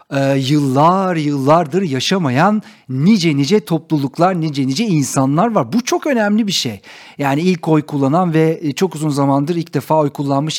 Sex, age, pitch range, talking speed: male, 50-69, 150-210 Hz, 155 wpm